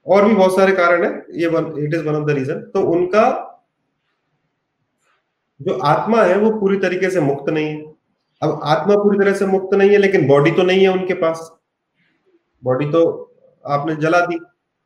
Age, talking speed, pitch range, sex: 30-49, 180 wpm, 155-195 Hz, male